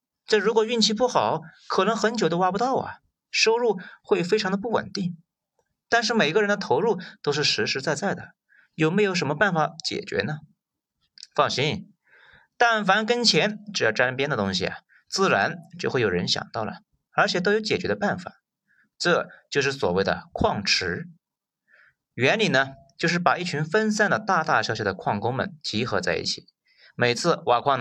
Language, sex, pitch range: Chinese, male, 160-215 Hz